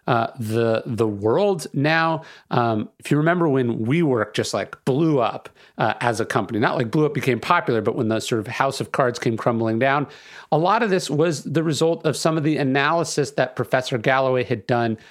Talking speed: 210 wpm